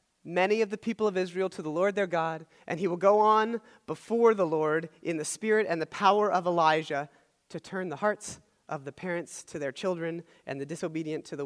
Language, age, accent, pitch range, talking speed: English, 30-49, American, 160-210 Hz, 220 wpm